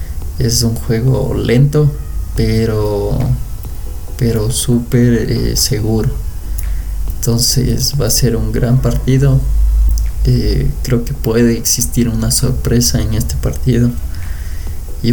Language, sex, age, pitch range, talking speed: Spanish, male, 20-39, 85-130 Hz, 105 wpm